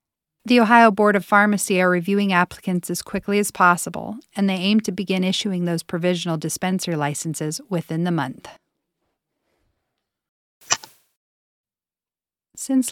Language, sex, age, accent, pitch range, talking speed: English, female, 40-59, American, 165-195 Hz, 120 wpm